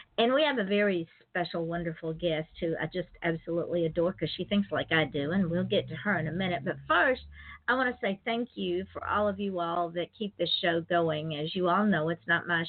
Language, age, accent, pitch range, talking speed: English, 50-69, American, 165-210 Hz, 245 wpm